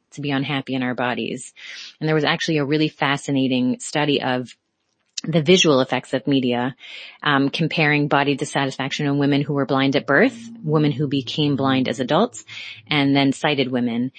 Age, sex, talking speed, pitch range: 30-49, female, 175 wpm, 135-155 Hz